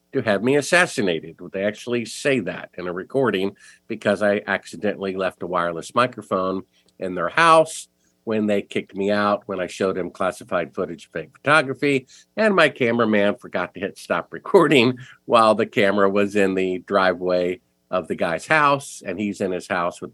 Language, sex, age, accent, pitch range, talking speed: English, male, 50-69, American, 90-110 Hz, 180 wpm